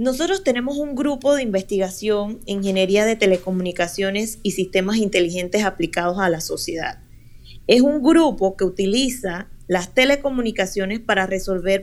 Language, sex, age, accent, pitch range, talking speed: Spanish, female, 20-39, American, 190-225 Hz, 130 wpm